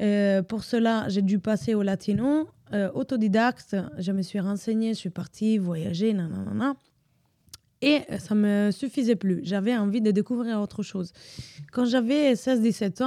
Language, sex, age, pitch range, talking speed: French, female, 20-39, 190-230 Hz, 160 wpm